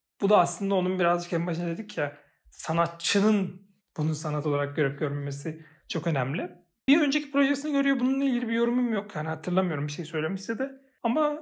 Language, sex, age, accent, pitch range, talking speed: Turkish, male, 40-59, native, 160-205 Hz, 175 wpm